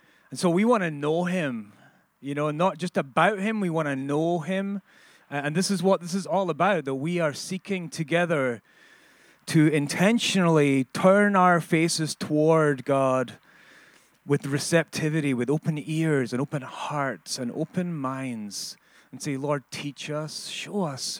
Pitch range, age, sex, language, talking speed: 140-185 Hz, 30-49, male, English, 160 wpm